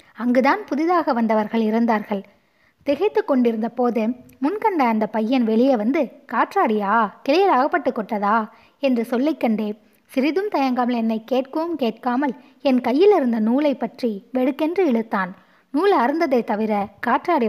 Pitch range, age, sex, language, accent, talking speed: 225-285 Hz, 20-39, female, Tamil, native, 110 wpm